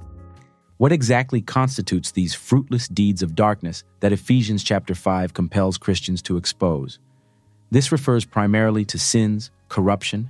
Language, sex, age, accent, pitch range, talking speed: English, male, 40-59, American, 95-115 Hz, 130 wpm